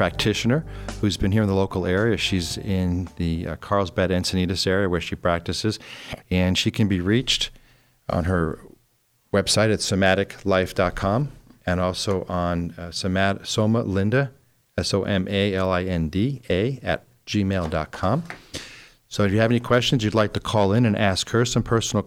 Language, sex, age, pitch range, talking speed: English, male, 40-59, 90-110 Hz, 145 wpm